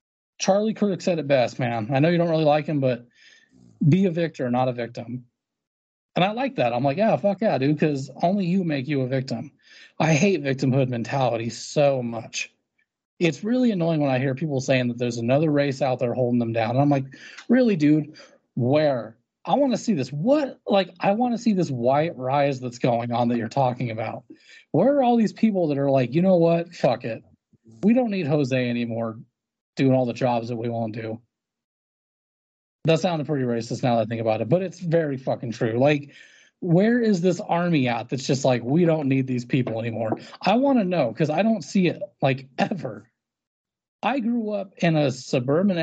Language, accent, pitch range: English, American, 125-185 Hz